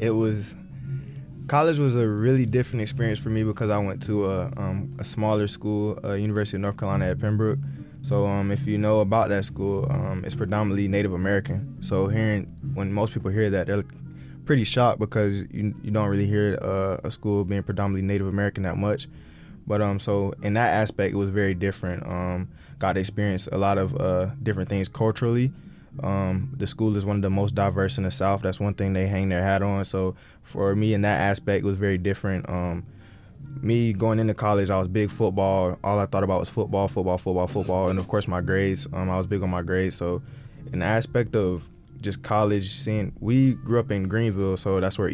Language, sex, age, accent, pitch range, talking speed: English, male, 20-39, American, 95-110 Hz, 215 wpm